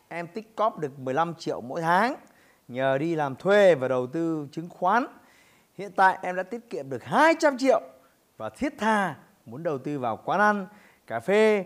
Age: 20-39